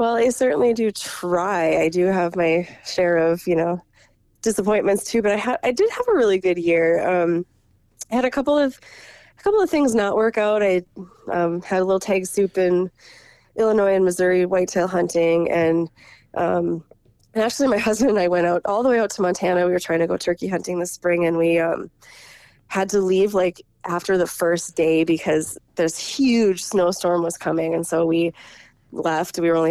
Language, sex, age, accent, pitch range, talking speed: English, female, 20-39, American, 170-210 Hz, 200 wpm